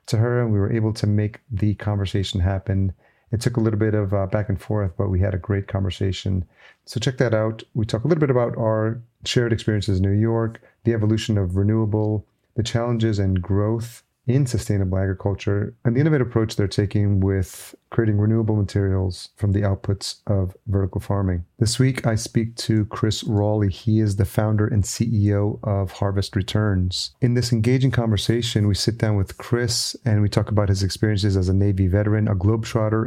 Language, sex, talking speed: English, male, 190 wpm